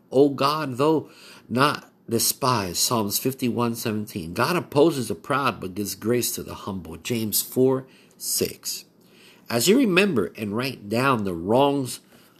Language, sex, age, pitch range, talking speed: English, male, 50-69, 105-140 Hz, 145 wpm